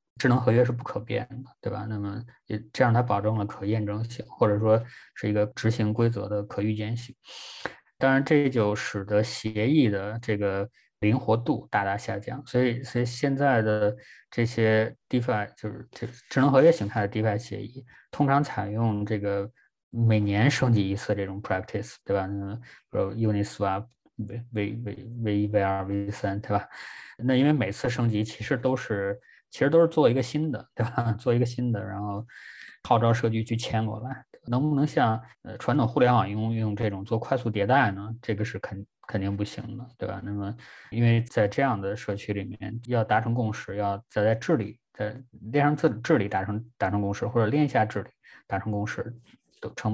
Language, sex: Chinese, male